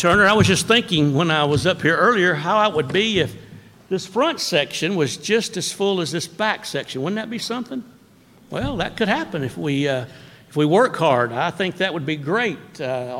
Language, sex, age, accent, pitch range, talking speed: English, male, 60-79, American, 145-195 Hz, 225 wpm